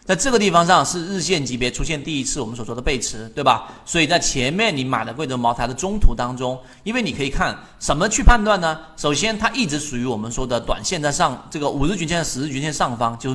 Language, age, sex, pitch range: Chinese, 30-49, male, 125-190 Hz